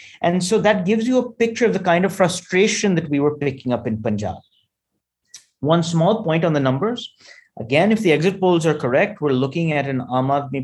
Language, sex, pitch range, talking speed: English, male, 130-175 Hz, 210 wpm